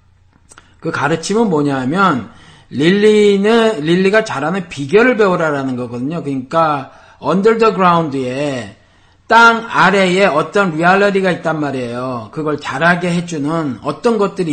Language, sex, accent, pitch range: Korean, male, native, 135-195 Hz